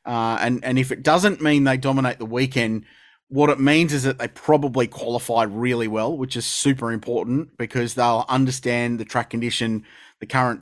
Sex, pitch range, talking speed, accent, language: male, 115-145 Hz, 185 wpm, Australian, English